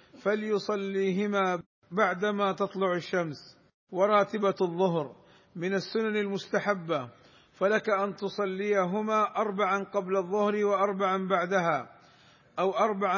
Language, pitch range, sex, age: Arabic, 185-205 Hz, male, 50-69